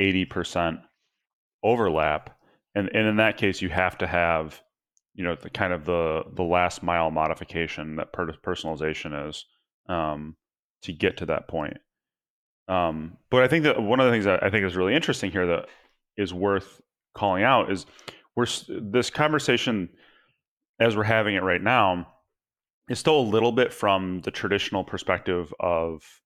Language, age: English, 30-49